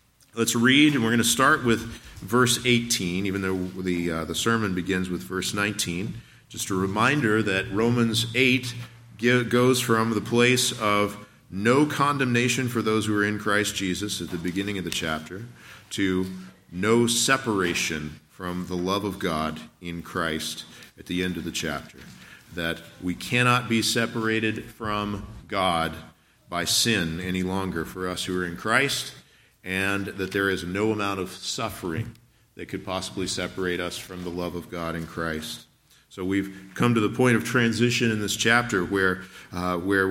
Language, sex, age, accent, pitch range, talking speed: English, male, 50-69, American, 90-115 Hz, 170 wpm